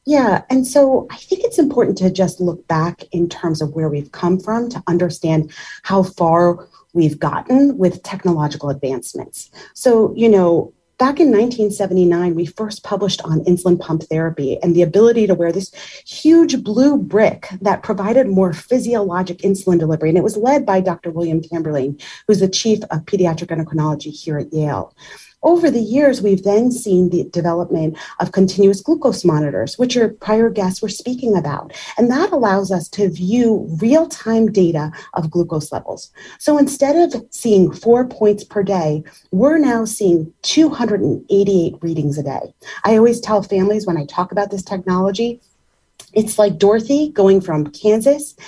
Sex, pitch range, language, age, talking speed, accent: female, 170-225 Hz, English, 40-59, 165 wpm, American